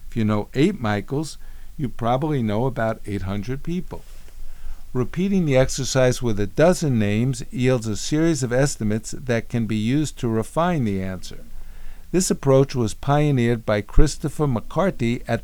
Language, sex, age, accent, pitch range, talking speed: English, male, 50-69, American, 105-140 Hz, 150 wpm